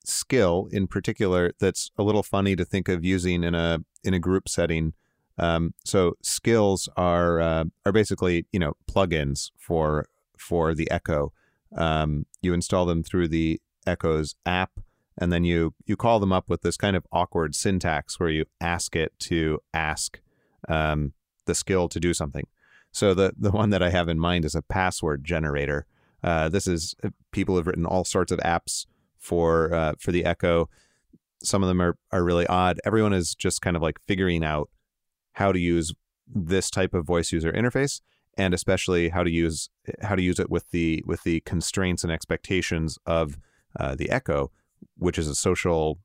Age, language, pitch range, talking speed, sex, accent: 30-49, English, 80-95 Hz, 180 wpm, male, American